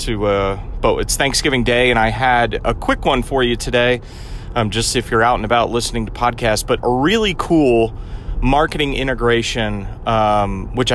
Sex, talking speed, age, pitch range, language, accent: male, 180 wpm, 30-49, 110-125 Hz, English, American